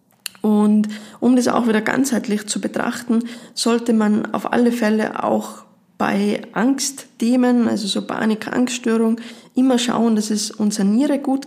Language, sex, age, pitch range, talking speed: German, female, 20-39, 210-240 Hz, 140 wpm